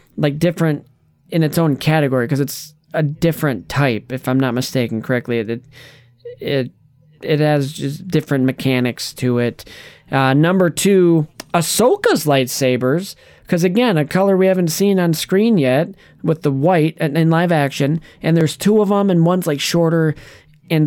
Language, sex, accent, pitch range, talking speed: English, male, American, 130-175 Hz, 165 wpm